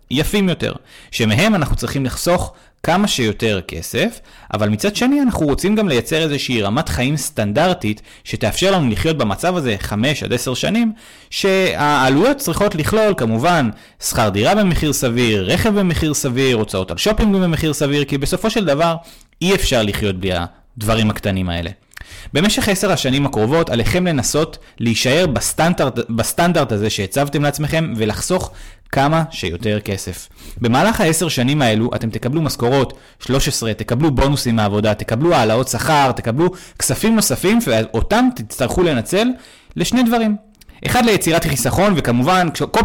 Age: 30-49